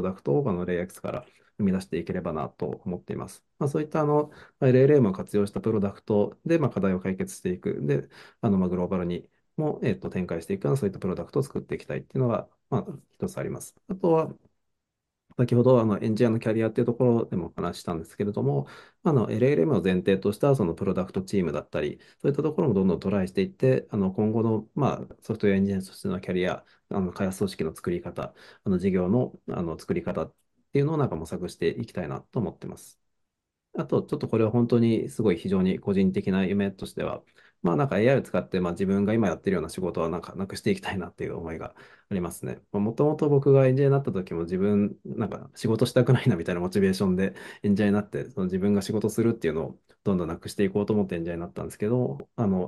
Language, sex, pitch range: Japanese, male, 95-140 Hz